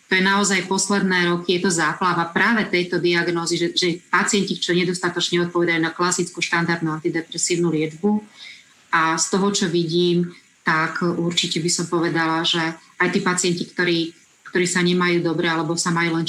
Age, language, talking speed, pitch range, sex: 30-49, Slovak, 165 wpm, 175-185 Hz, female